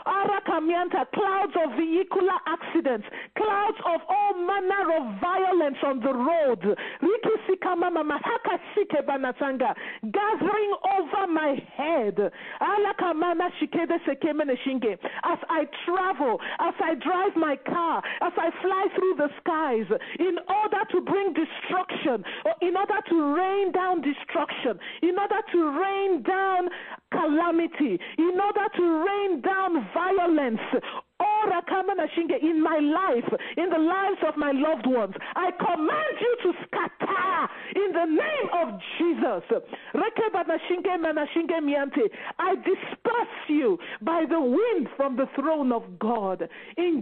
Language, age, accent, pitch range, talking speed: English, 40-59, Nigerian, 300-385 Hz, 110 wpm